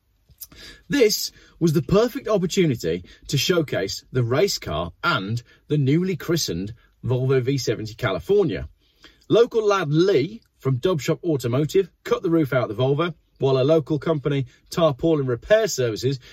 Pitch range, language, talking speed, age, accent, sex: 115-170 Hz, English, 135 wpm, 40-59, British, male